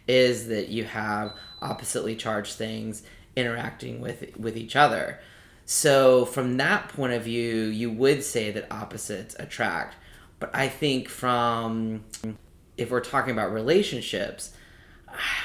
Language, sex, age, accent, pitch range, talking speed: English, male, 30-49, American, 110-125 Hz, 130 wpm